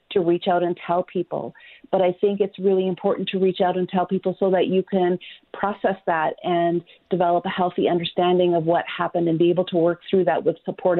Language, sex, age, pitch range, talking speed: English, female, 40-59, 170-185 Hz, 225 wpm